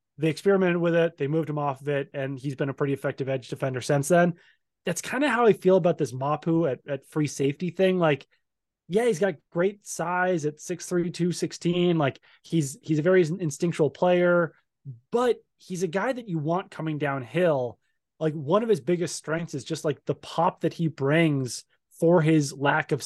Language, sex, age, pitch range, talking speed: English, male, 20-39, 145-175 Hz, 200 wpm